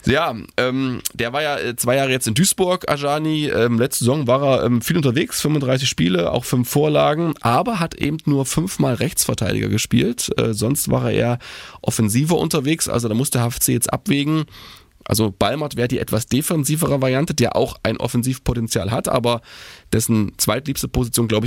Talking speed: 170 wpm